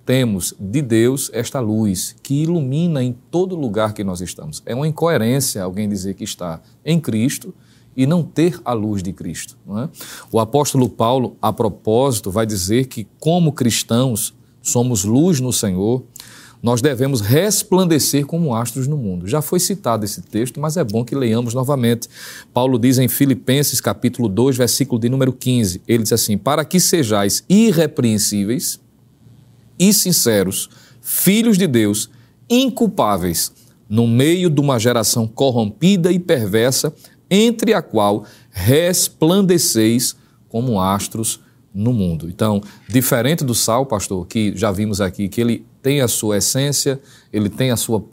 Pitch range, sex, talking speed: 110-140 Hz, male, 150 wpm